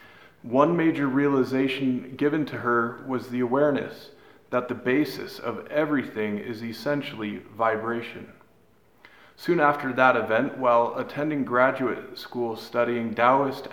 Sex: male